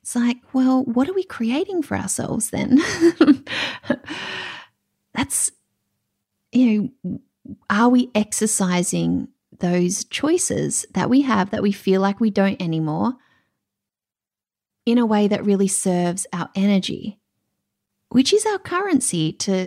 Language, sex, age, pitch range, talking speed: English, female, 30-49, 170-250 Hz, 125 wpm